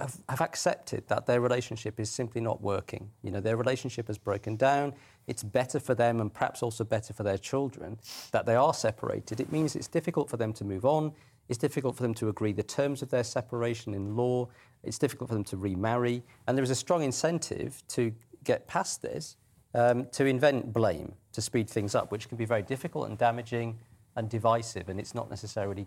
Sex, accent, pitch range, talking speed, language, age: male, British, 105-125 Hz, 210 wpm, English, 40-59